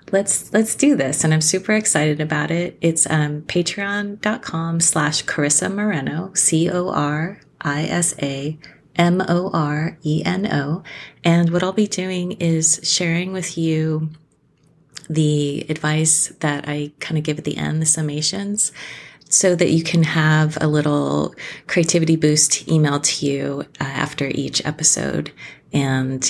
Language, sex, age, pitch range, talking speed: English, female, 30-49, 145-175 Hz, 125 wpm